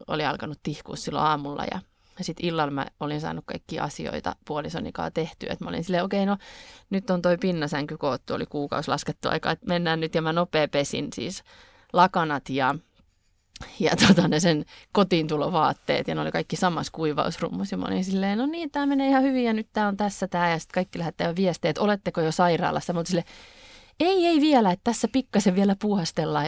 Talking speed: 200 wpm